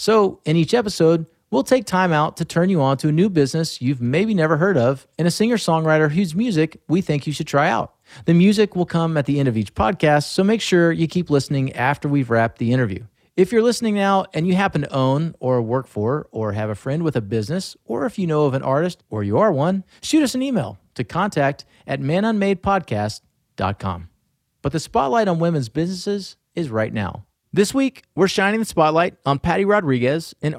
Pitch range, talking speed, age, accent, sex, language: 125-180 Hz, 215 wpm, 40-59, American, male, English